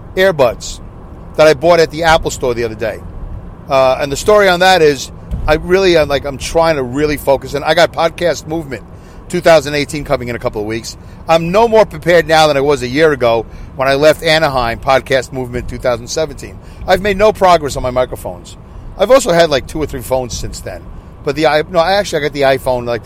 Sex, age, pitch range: male, 40-59, 115-160 Hz